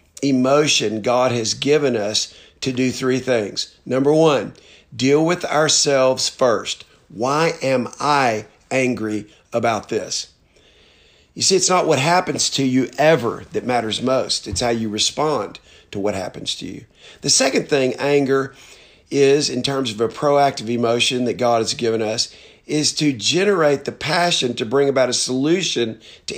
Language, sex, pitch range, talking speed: English, male, 120-150 Hz, 155 wpm